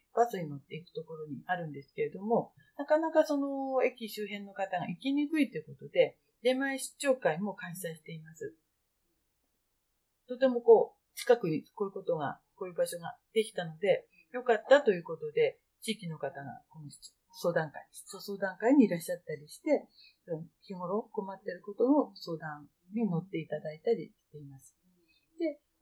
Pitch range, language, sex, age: 180-280 Hz, Japanese, female, 40-59